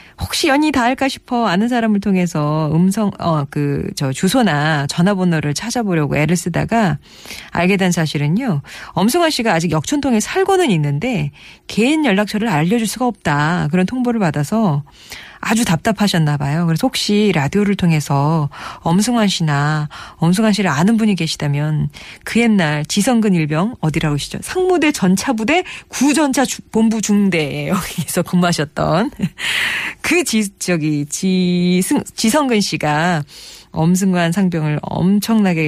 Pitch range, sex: 155-215 Hz, female